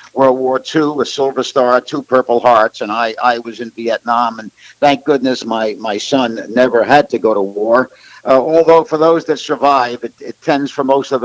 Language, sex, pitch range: English, male, 120-145 Hz